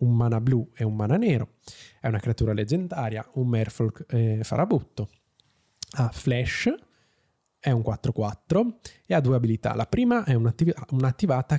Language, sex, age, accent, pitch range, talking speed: Italian, male, 20-39, native, 115-150 Hz, 150 wpm